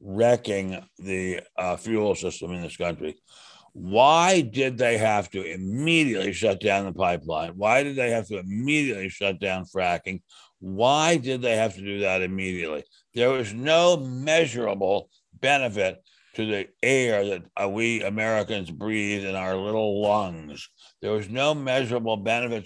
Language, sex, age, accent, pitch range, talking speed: English, male, 60-79, American, 100-125 Hz, 150 wpm